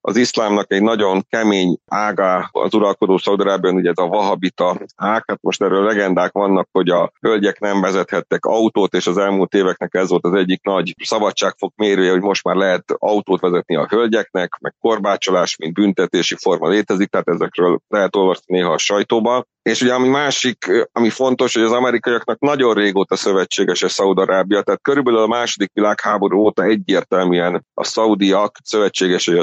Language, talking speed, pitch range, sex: Hungarian, 165 wpm, 95-115 Hz, male